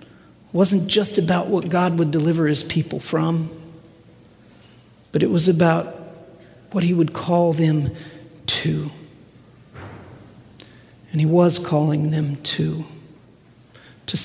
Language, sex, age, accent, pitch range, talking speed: English, male, 40-59, American, 155-175 Hz, 115 wpm